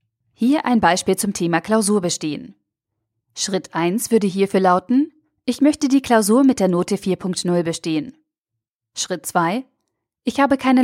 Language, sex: German, female